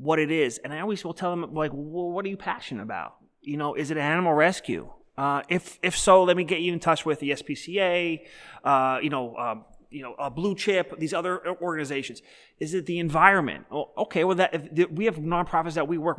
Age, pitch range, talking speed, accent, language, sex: 30-49, 150-195 Hz, 235 wpm, American, English, male